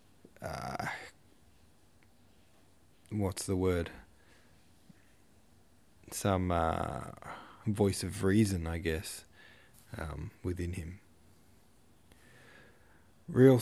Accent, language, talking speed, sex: Australian, English, 65 wpm, male